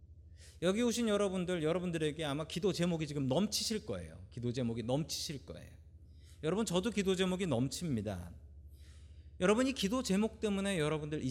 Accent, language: native, Korean